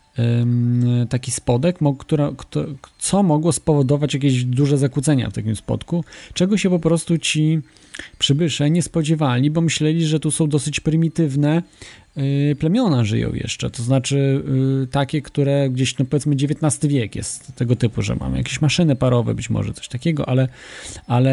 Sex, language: male, Polish